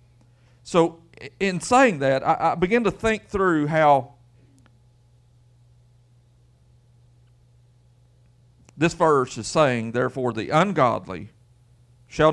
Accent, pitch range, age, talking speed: American, 120-125 Hz, 50-69, 90 wpm